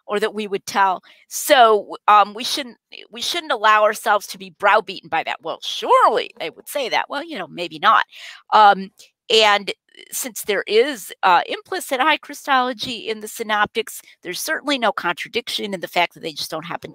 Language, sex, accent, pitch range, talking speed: English, female, American, 185-280 Hz, 190 wpm